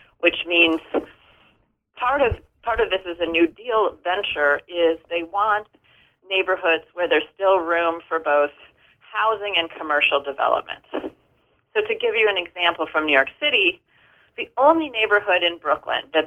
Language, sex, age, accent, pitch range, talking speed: English, female, 40-59, American, 160-230 Hz, 150 wpm